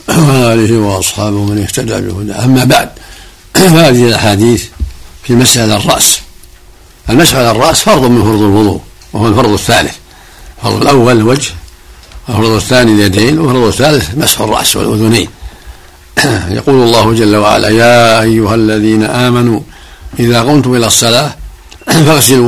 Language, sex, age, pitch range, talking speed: Arabic, male, 60-79, 95-120 Hz, 120 wpm